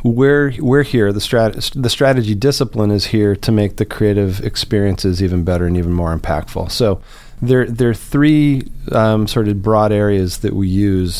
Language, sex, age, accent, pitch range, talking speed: English, male, 40-59, American, 95-115 Hz, 180 wpm